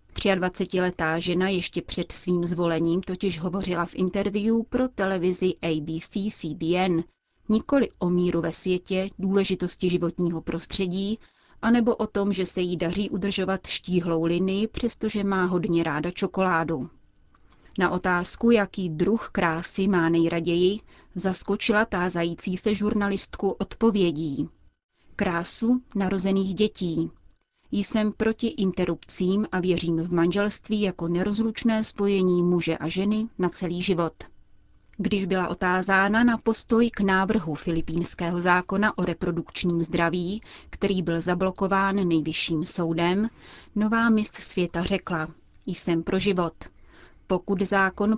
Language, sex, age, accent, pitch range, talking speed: Czech, female, 30-49, native, 170-205 Hz, 115 wpm